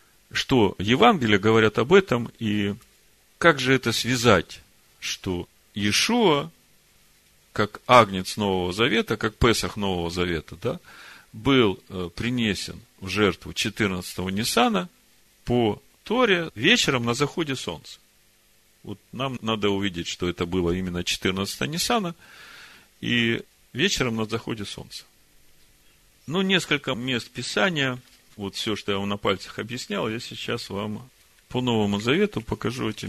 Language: Russian